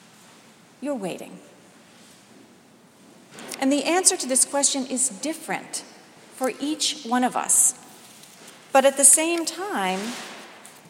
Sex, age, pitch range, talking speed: female, 40-59, 195-270 Hz, 110 wpm